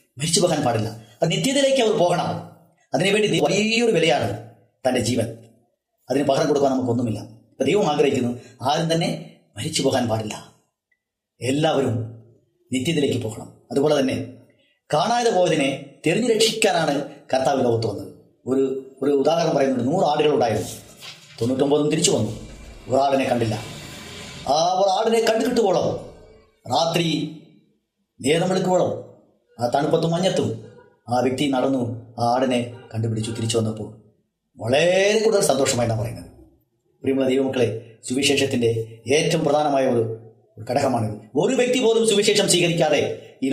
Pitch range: 115-160 Hz